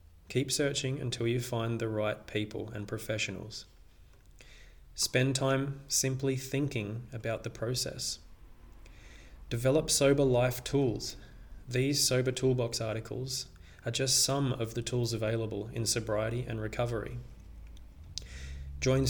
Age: 20-39